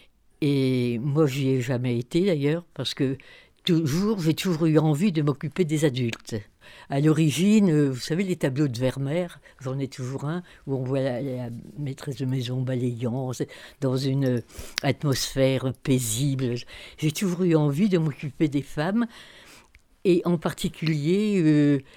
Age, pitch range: 60-79, 130-165 Hz